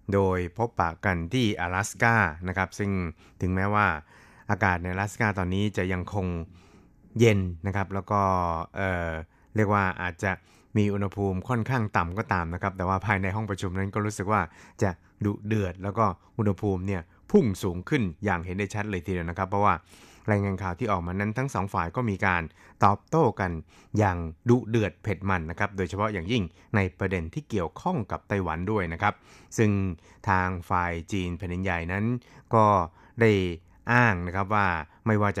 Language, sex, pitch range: Thai, male, 90-105 Hz